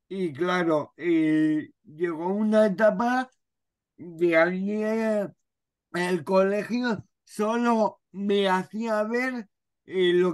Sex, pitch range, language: male, 165-210 Hz, Spanish